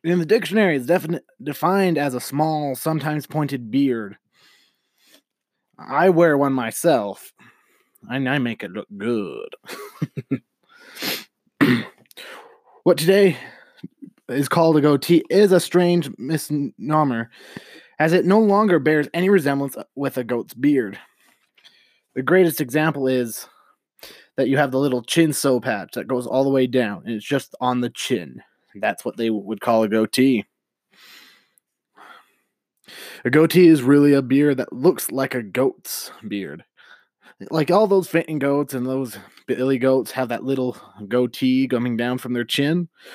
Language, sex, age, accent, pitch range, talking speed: English, male, 20-39, American, 125-170 Hz, 145 wpm